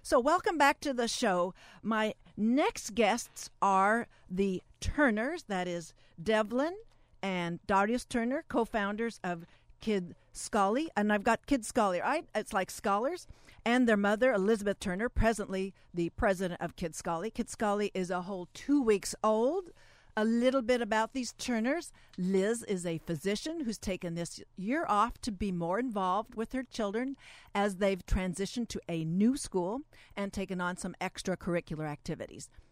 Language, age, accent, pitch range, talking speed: English, 50-69, American, 180-235 Hz, 155 wpm